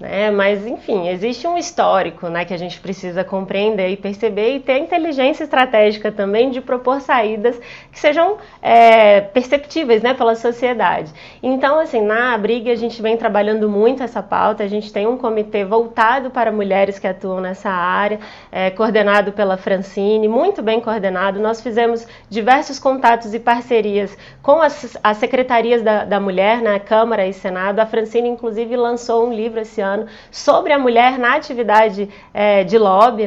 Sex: female